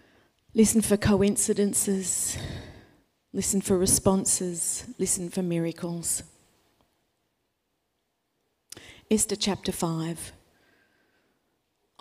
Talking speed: 60 wpm